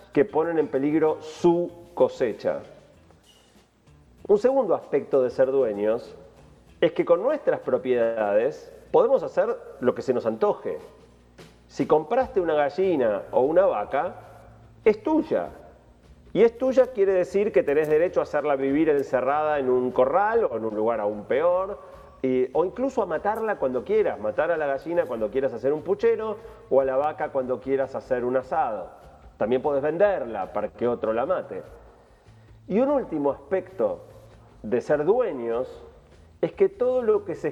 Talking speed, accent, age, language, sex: 160 wpm, Argentinian, 40-59, Spanish, male